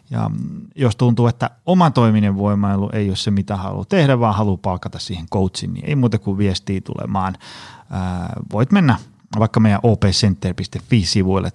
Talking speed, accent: 160 wpm, native